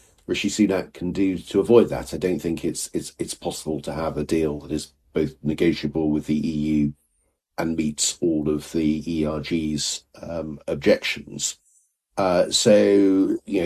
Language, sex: English, male